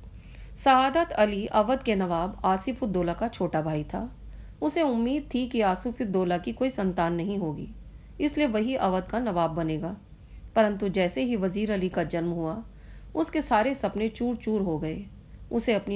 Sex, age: female, 40-59